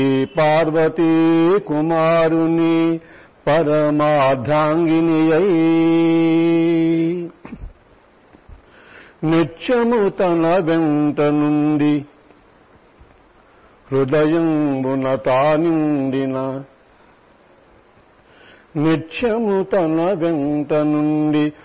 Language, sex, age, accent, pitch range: Telugu, male, 50-69, native, 150-170 Hz